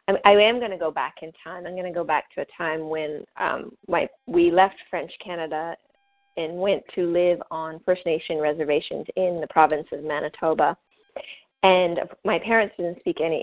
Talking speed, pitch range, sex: 190 wpm, 165-220 Hz, female